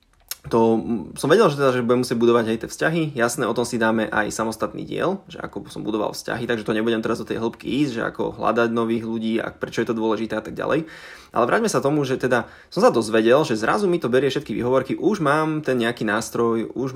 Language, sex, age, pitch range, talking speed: Slovak, male, 20-39, 110-130 Hz, 240 wpm